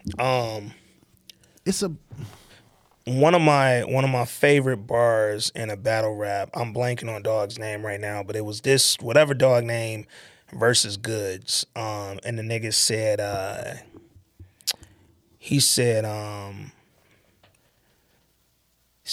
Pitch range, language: 110-160 Hz, English